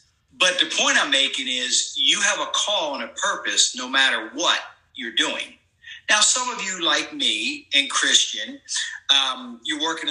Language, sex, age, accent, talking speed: English, male, 50-69, American, 170 wpm